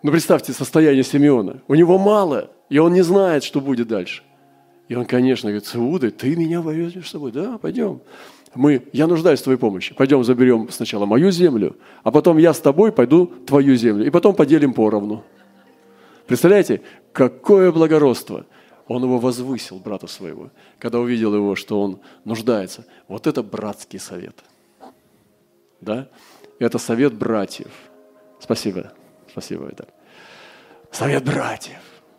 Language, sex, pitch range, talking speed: Russian, male, 110-155 Hz, 140 wpm